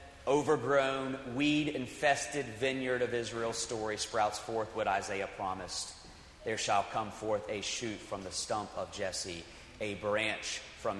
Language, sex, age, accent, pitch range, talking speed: English, male, 40-59, American, 115-165 Hz, 135 wpm